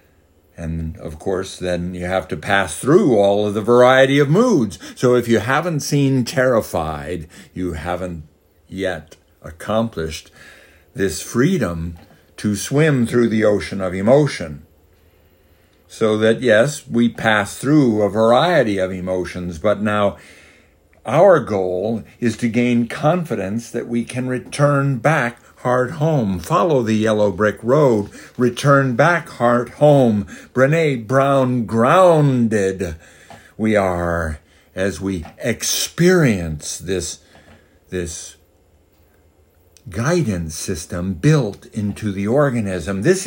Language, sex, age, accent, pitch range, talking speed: English, male, 60-79, American, 90-125 Hz, 120 wpm